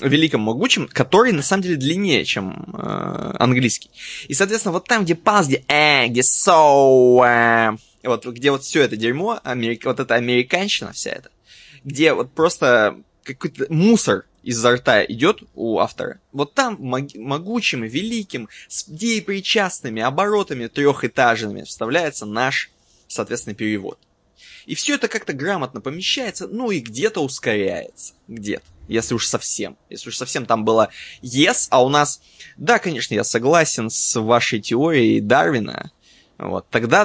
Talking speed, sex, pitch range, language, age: 140 wpm, male, 115-175 Hz, Russian, 20-39